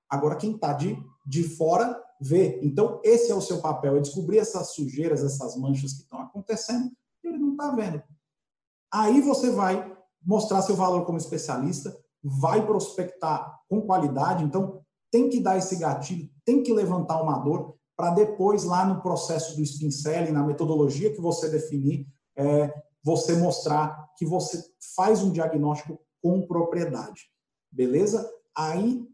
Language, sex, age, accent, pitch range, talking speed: Portuguese, male, 50-69, Brazilian, 150-205 Hz, 150 wpm